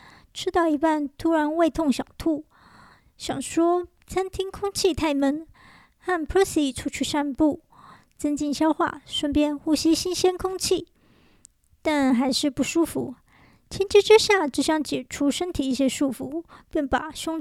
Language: Chinese